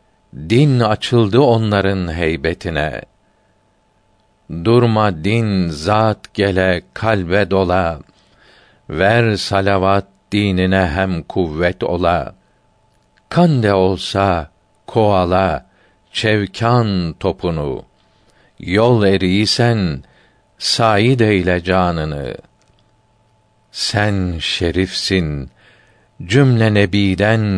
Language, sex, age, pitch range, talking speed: Turkish, male, 50-69, 90-110 Hz, 65 wpm